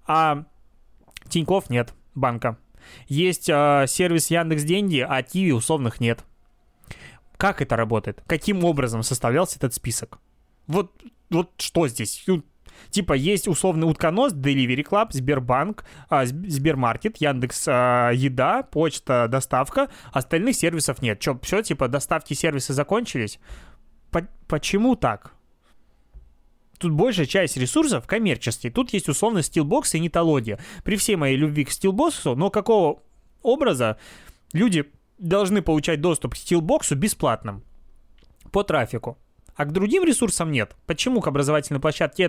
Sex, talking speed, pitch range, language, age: male, 125 wpm, 135-175 Hz, Russian, 20-39